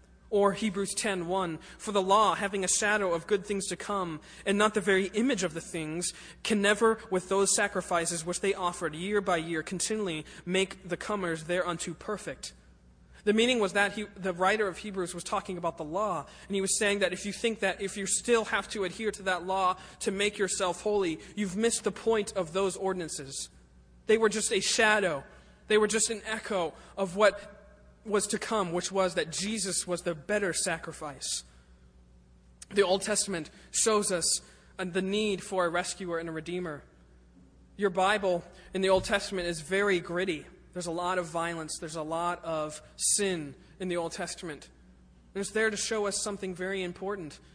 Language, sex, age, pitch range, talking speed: English, male, 20-39, 170-205 Hz, 190 wpm